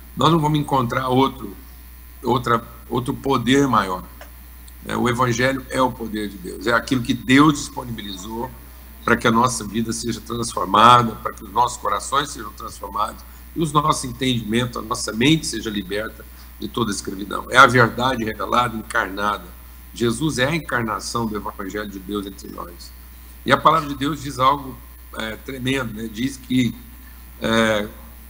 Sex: male